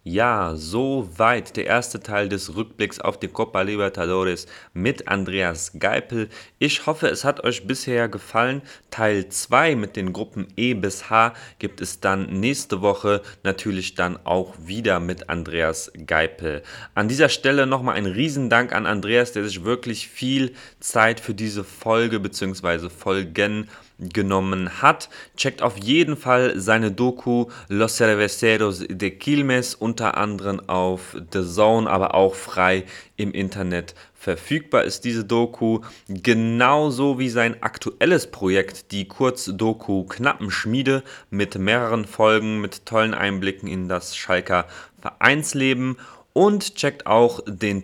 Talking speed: 135 wpm